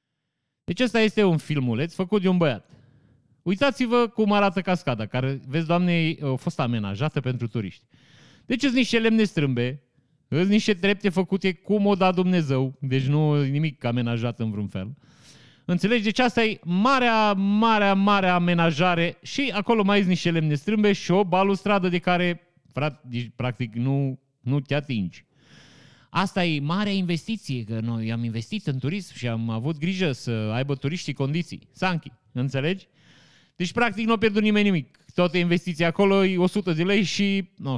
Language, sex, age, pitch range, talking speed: Romanian, male, 30-49, 135-195 Hz, 165 wpm